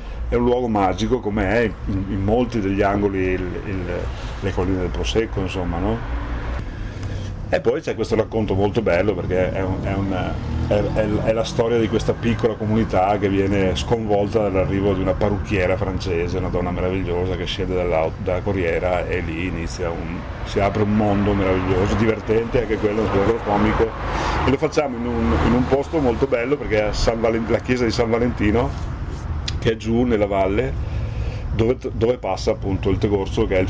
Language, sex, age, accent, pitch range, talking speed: Italian, male, 40-59, native, 95-115 Hz, 185 wpm